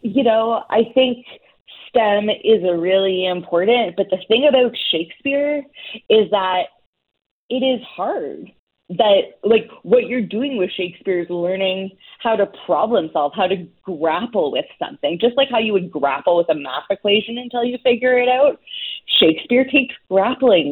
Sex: female